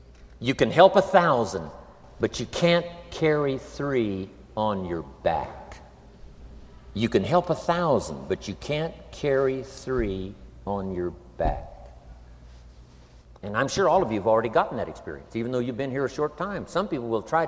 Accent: American